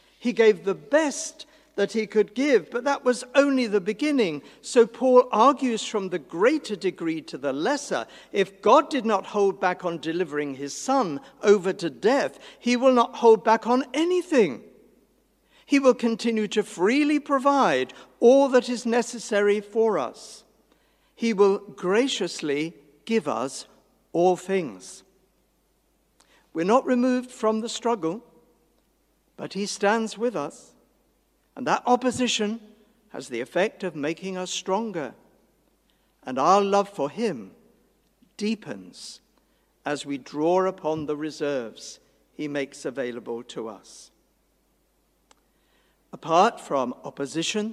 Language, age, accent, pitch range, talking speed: English, 60-79, British, 165-245 Hz, 130 wpm